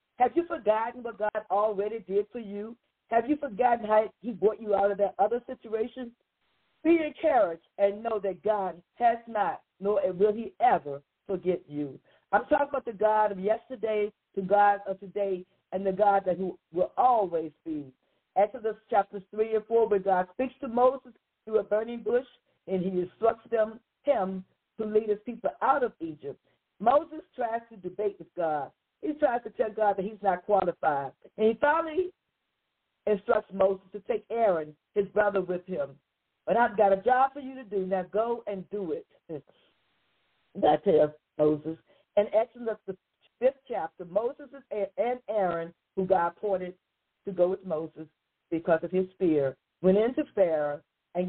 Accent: American